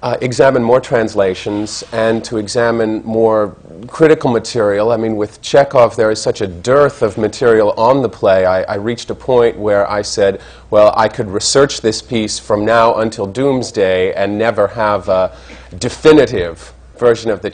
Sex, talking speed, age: male, 170 wpm, 40-59